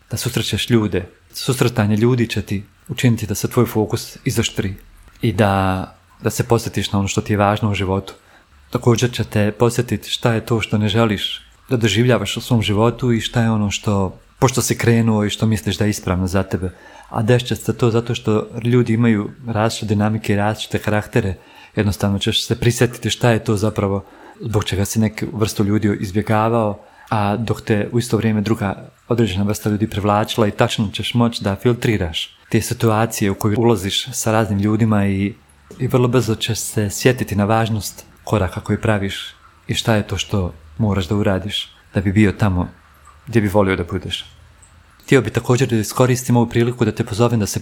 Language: Croatian